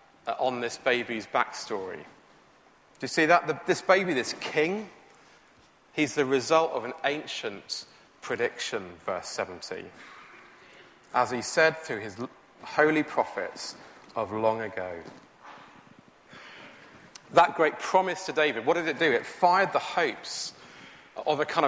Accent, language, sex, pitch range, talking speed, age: British, English, male, 120-160 Hz, 130 wpm, 30-49